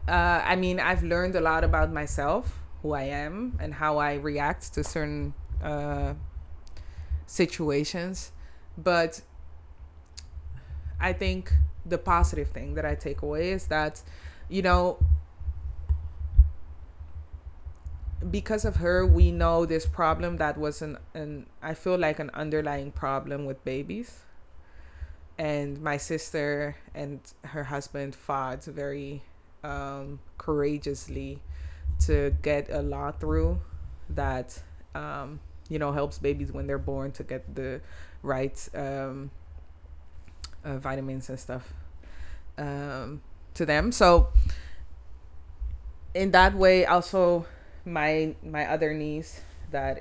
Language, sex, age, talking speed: English, female, 20-39, 120 wpm